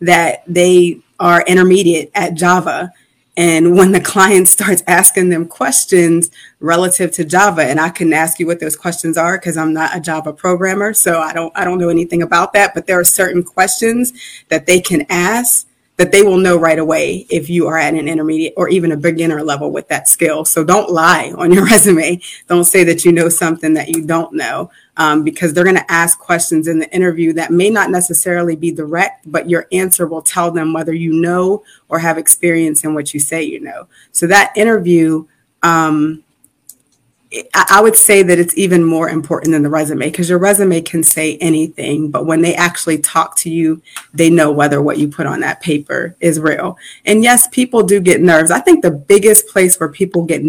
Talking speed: 205 wpm